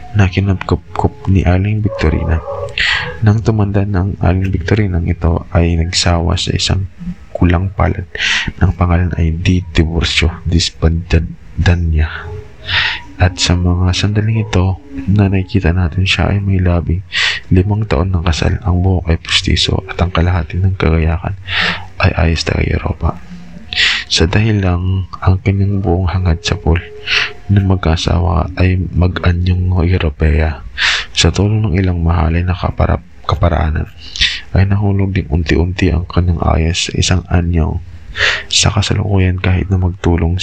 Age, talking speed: 20-39, 130 wpm